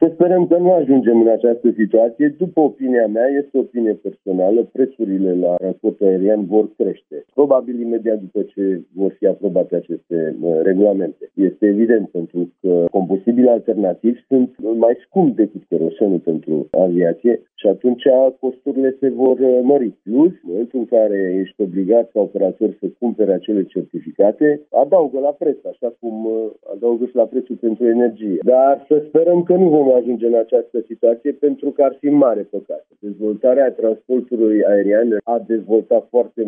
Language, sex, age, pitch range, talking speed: Romanian, male, 50-69, 105-135 Hz, 155 wpm